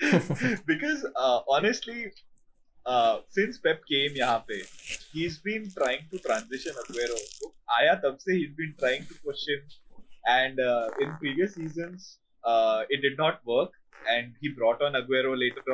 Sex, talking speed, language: male, 155 wpm, Hindi